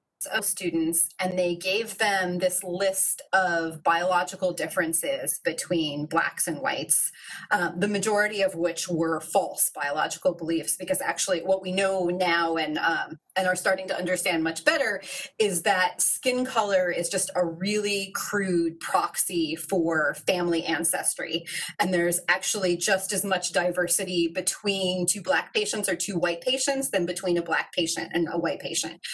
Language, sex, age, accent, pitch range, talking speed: English, female, 30-49, American, 170-205 Hz, 155 wpm